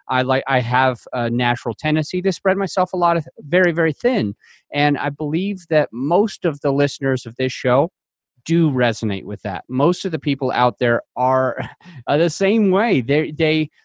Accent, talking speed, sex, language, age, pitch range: American, 190 wpm, male, English, 30-49, 135-165 Hz